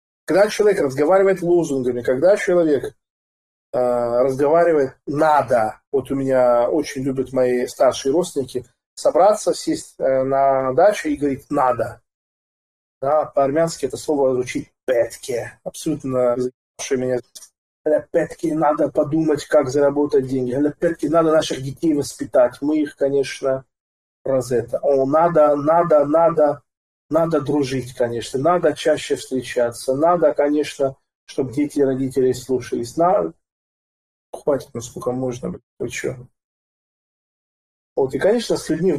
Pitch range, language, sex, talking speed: 125-155 Hz, Russian, male, 120 wpm